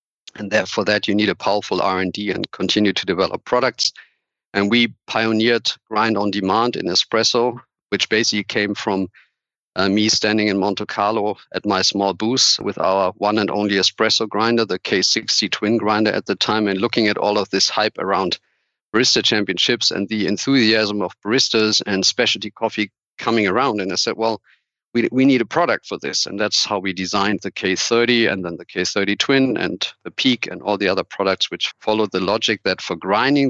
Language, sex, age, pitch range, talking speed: English, male, 40-59, 100-110 Hz, 190 wpm